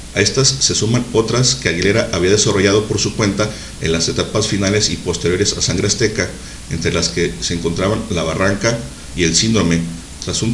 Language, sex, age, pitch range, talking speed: Spanish, male, 50-69, 90-115 Hz, 190 wpm